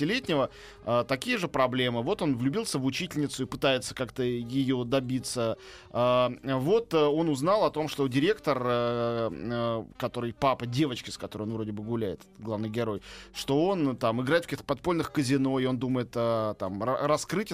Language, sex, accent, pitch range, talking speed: Russian, male, native, 130-180 Hz, 155 wpm